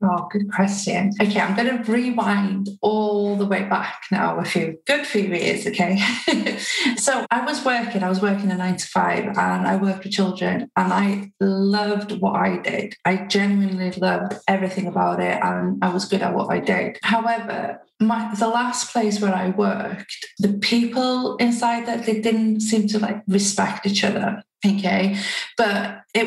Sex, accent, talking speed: female, British, 180 wpm